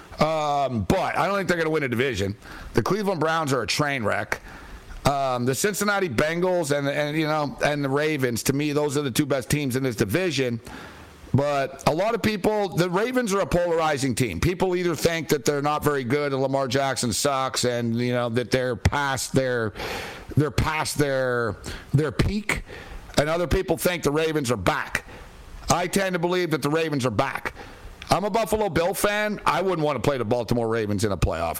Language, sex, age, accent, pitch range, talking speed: English, male, 60-79, American, 125-175 Hz, 205 wpm